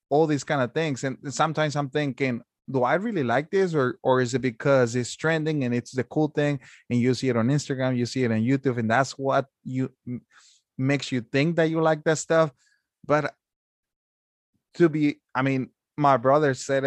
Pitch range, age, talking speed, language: 115-145 Hz, 20-39, 205 wpm, English